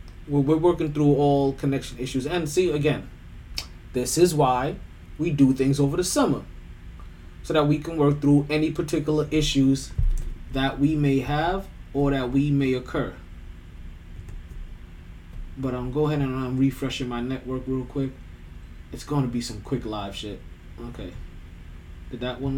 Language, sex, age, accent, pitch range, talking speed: English, male, 20-39, American, 90-150 Hz, 160 wpm